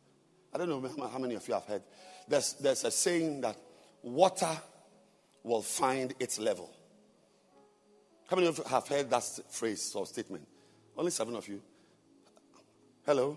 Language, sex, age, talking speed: English, male, 50-69, 155 wpm